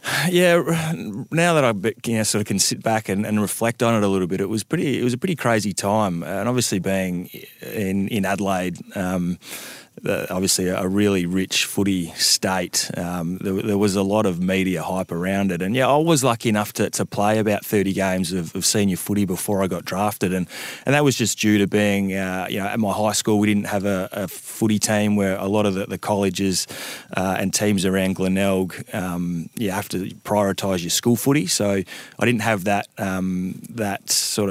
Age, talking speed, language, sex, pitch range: 20-39, 215 wpm, English, male, 95-105 Hz